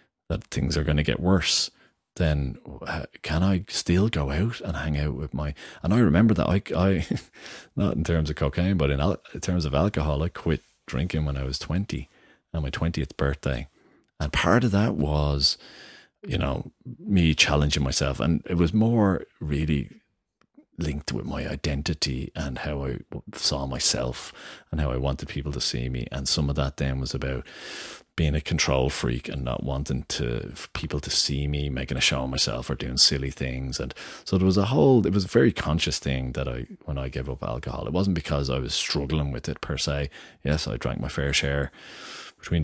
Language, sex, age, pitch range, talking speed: English, male, 30-49, 70-85 Hz, 200 wpm